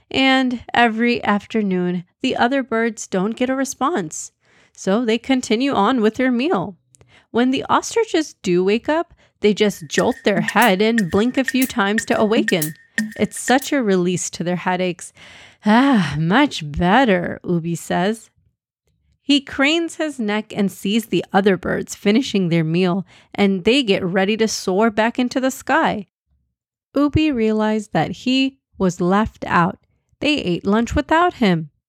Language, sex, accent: English, female, American